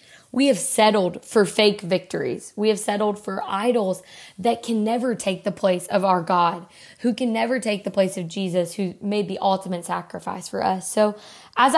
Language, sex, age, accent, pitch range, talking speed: English, female, 20-39, American, 185-225 Hz, 190 wpm